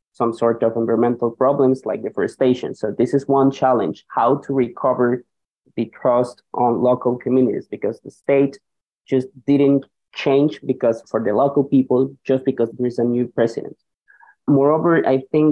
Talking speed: 160 wpm